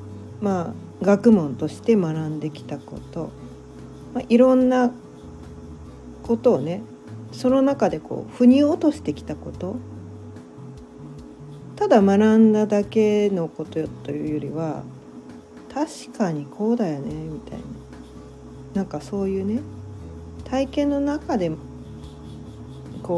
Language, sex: Japanese, female